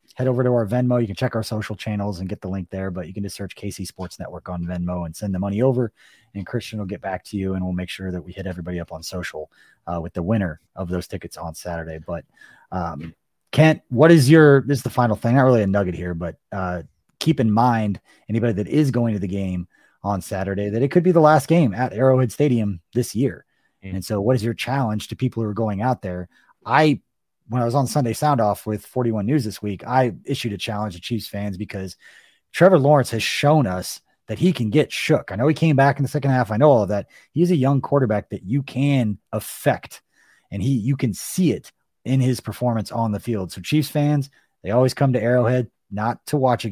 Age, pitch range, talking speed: 30-49, 95-130 Hz, 245 wpm